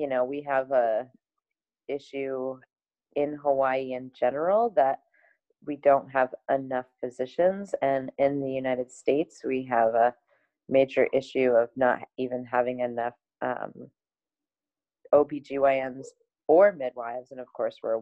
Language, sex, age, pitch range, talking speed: English, female, 30-49, 120-145 Hz, 130 wpm